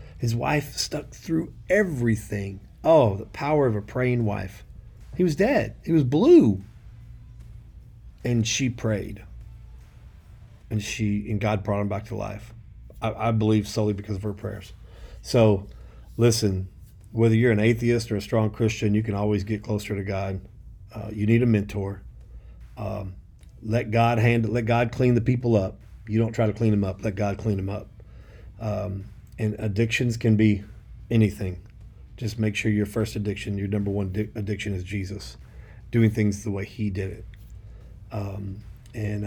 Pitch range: 100-115 Hz